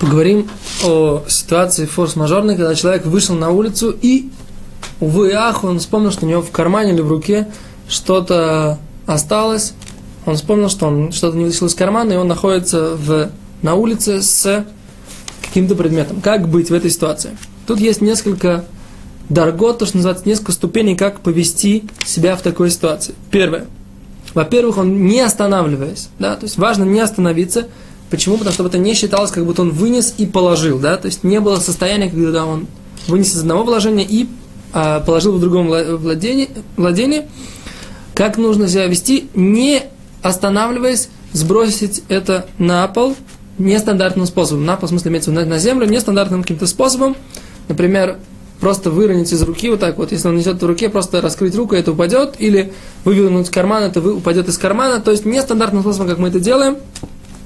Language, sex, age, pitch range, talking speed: Russian, male, 20-39, 170-210 Hz, 170 wpm